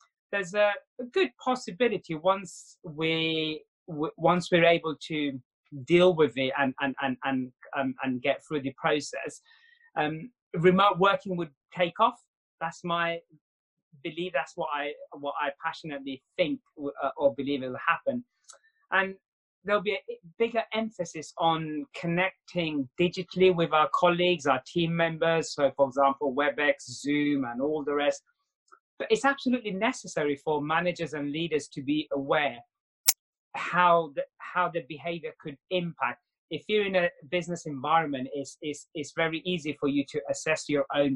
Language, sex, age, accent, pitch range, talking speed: English, male, 30-49, British, 145-180 Hz, 145 wpm